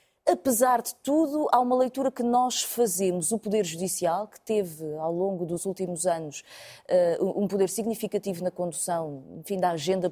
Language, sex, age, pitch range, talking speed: Portuguese, female, 20-39, 175-245 Hz, 155 wpm